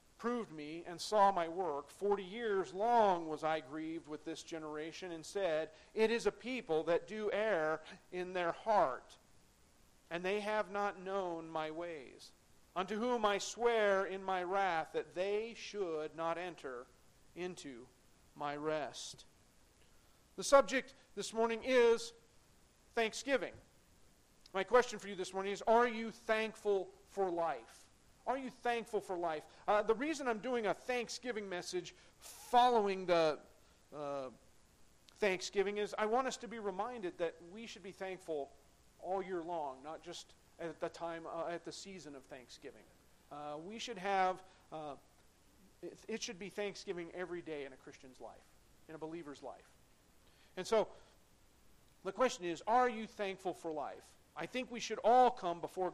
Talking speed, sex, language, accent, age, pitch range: 160 wpm, male, English, American, 40-59, 165-220 Hz